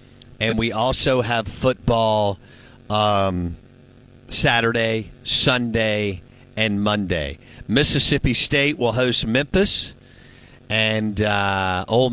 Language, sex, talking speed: English, male, 90 wpm